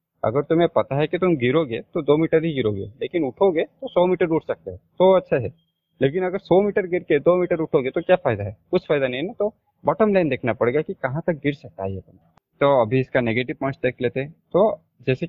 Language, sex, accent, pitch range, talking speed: Hindi, male, native, 125-170 Hz, 245 wpm